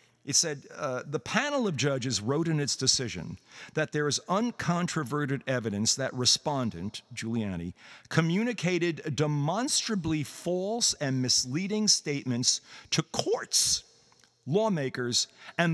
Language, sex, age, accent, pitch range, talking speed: English, male, 50-69, American, 130-180 Hz, 110 wpm